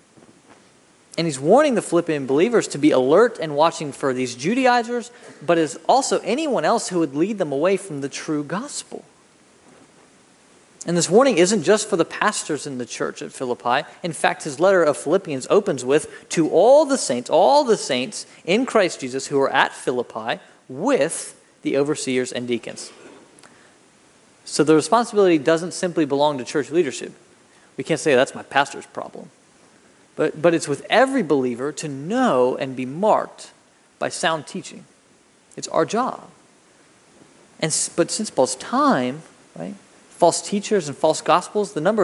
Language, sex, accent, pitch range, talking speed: English, male, American, 145-210 Hz, 165 wpm